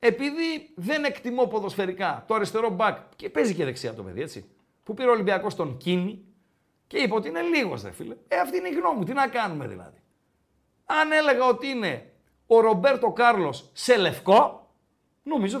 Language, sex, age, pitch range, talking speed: Greek, male, 50-69, 170-255 Hz, 175 wpm